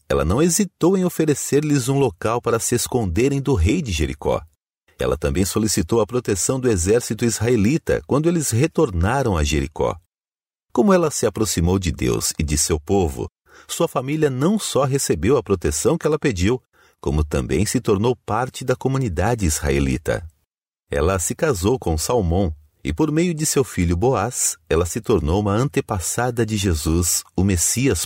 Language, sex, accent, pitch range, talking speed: Portuguese, male, Brazilian, 85-130 Hz, 165 wpm